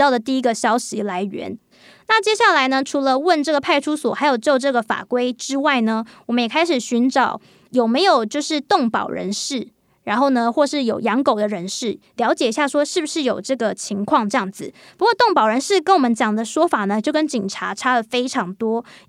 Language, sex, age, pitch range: Chinese, female, 20-39, 230-305 Hz